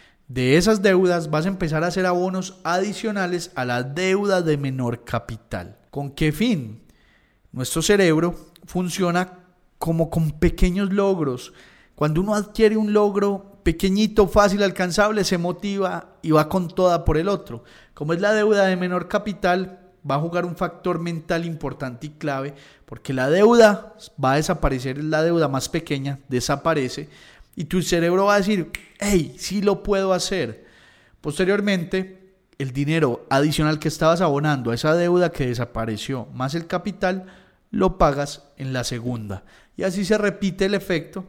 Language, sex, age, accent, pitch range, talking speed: Spanish, male, 30-49, Colombian, 140-190 Hz, 155 wpm